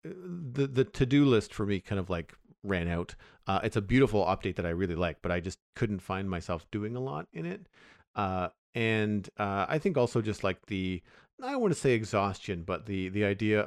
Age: 40-59